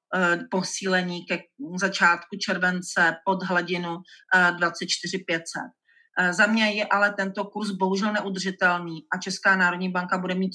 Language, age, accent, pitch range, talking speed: Czech, 40-59, native, 175-195 Hz, 120 wpm